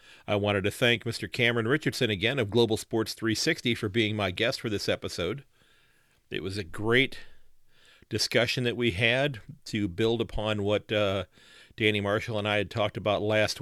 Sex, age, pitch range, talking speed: male, 40-59, 100-115 Hz, 175 wpm